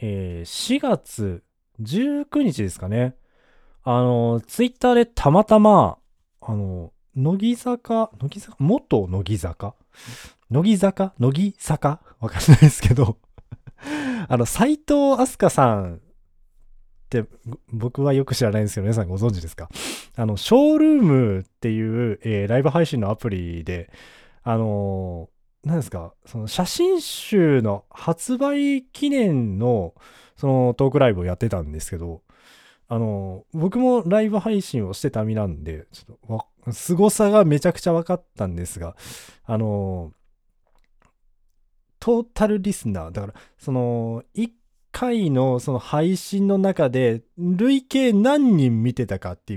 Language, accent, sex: Japanese, native, male